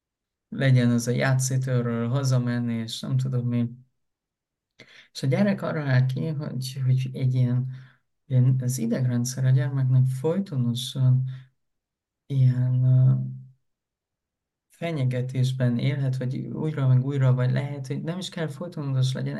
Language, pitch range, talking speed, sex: Hungarian, 125-145 Hz, 125 wpm, male